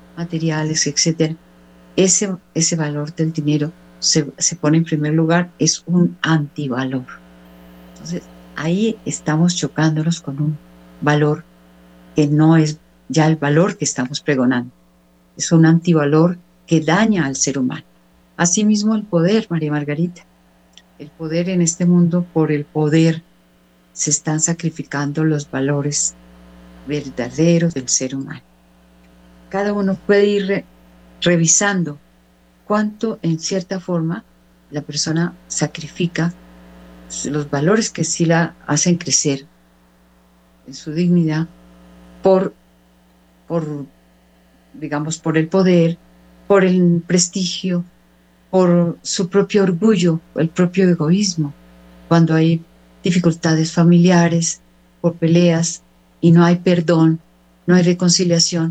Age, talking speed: 50-69, 115 wpm